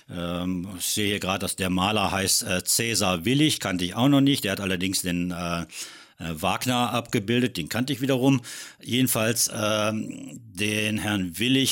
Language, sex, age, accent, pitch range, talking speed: German, male, 60-79, German, 95-115 Hz, 170 wpm